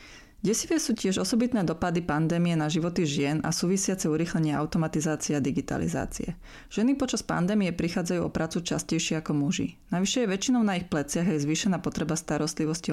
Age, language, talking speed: 30-49, Slovak, 155 wpm